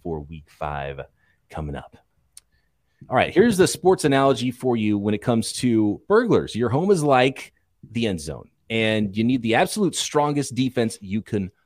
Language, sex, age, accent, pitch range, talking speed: English, male, 30-49, American, 100-135 Hz, 175 wpm